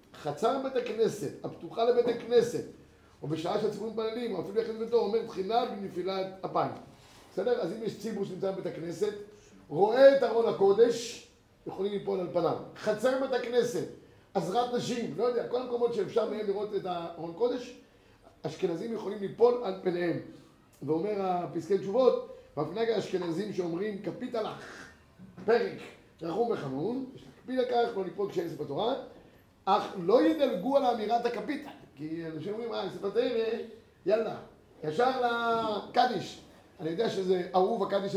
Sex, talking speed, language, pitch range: male, 145 wpm, Hebrew, 175-235 Hz